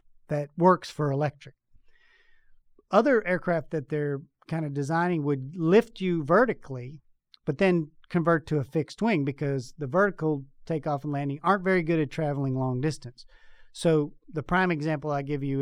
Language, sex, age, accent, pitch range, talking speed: English, male, 40-59, American, 140-170 Hz, 160 wpm